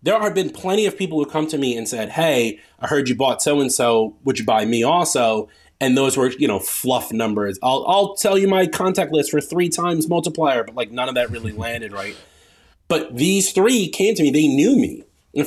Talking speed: 230 wpm